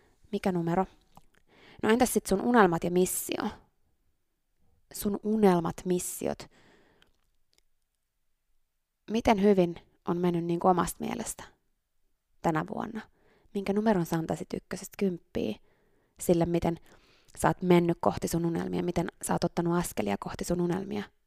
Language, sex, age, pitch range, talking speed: Finnish, female, 20-39, 170-190 Hz, 120 wpm